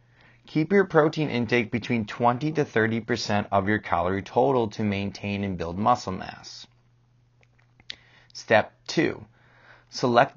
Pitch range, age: 110-135 Hz, 30-49